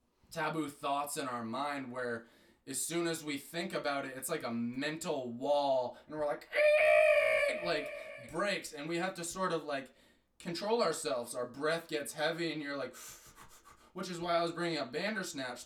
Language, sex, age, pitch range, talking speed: English, male, 20-39, 125-170 Hz, 180 wpm